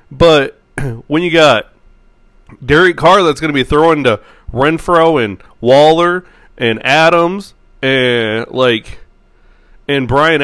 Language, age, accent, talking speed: English, 30-49, American, 120 wpm